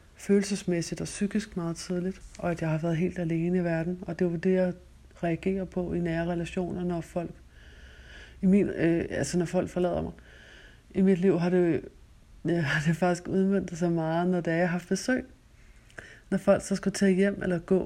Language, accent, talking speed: Danish, native, 200 wpm